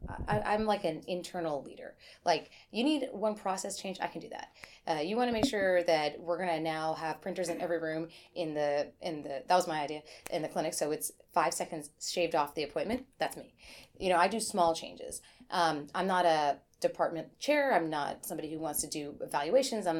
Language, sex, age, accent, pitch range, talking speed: English, female, 30-49, American, 160-235 Hz, 220 wpm